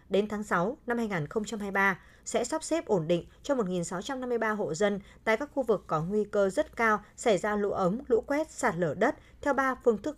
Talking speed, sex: 210 wpm, female